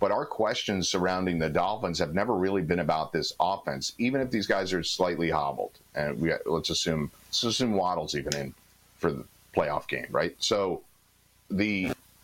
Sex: male